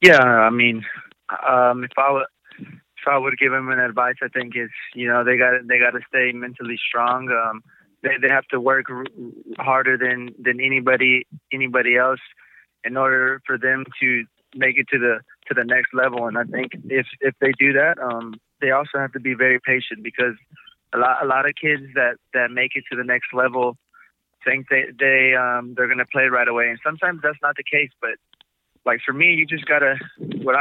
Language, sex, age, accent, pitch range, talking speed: English, male, 20-39, American, 125-140 Hz, 210 wpm